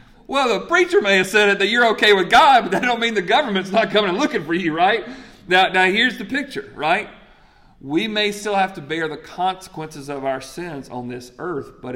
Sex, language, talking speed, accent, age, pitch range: male, English, 230 wpm, American, 40-59, 125-185 Hz